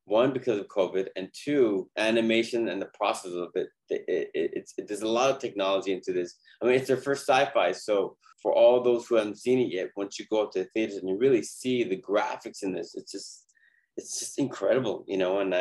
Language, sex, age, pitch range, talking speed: English, male, 20-39, 105-155 Hz, 230 wpm